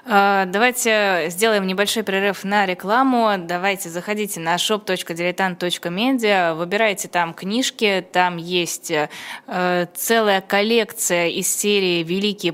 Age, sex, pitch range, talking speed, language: 20-39, female, 165-200 Hz, 95 wpm, Russian